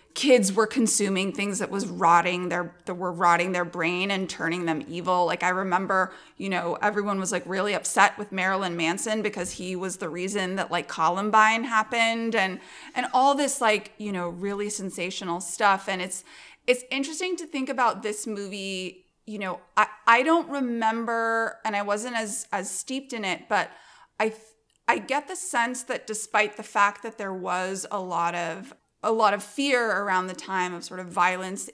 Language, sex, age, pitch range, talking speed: English, female, 30-49, 185-230 Hz, 185 wpm